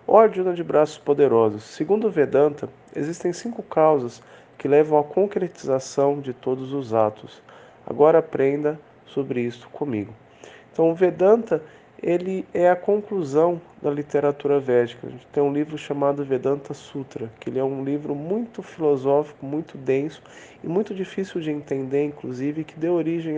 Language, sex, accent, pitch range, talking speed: English, male, Brazilian, 135-165 Hz, 150 wpm